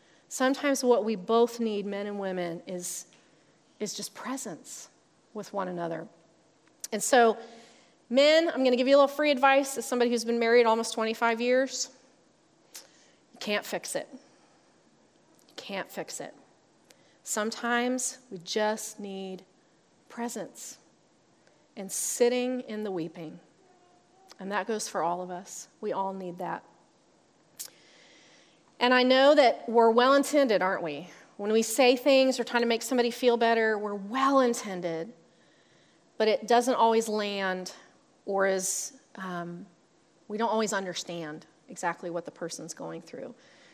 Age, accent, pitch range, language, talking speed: 40-59, American, 190-250 Hz, English, 140 wpm